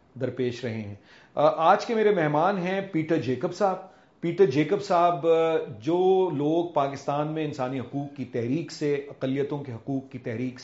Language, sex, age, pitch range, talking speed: Urdu, male, 40-59, 130-165 Hz, 165 wpm